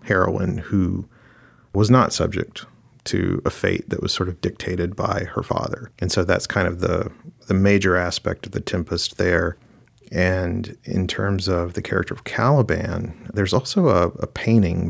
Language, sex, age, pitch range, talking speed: English, male, 40-59, 90-110 Hz, 170 wpm